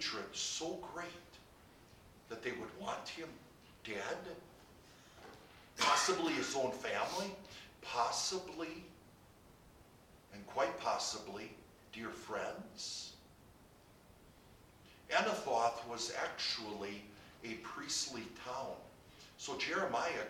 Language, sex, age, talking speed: English, male, 50-69, 75 wpm